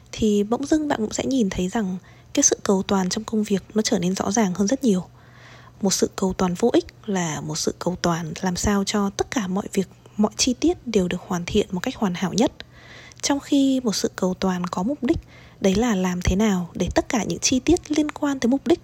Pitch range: 180-240 Hz